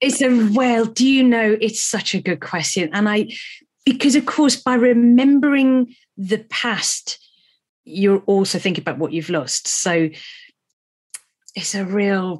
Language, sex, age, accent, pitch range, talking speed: English, female, 40-59, British, 165-235 Hz, 150 wpm